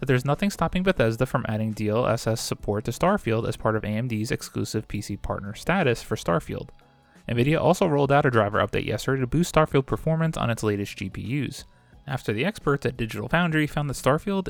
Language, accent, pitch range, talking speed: English, American, 110-155 Hz, 190 wpm